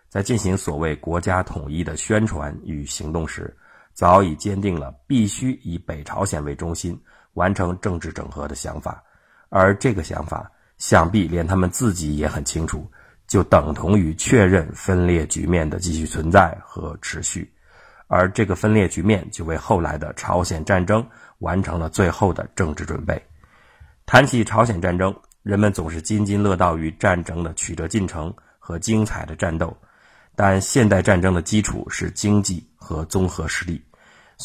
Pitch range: 80-105 Hz